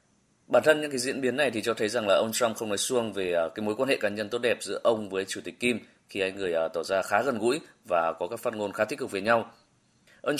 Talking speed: 295 wpm